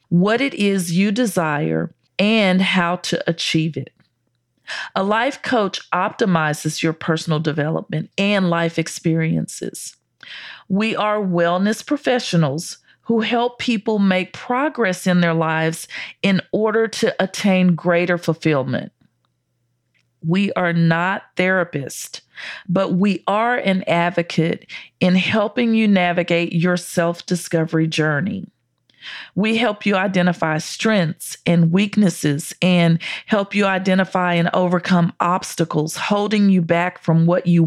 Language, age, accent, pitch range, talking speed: English, 40-59, American, 165-200 Hz, 120 wpm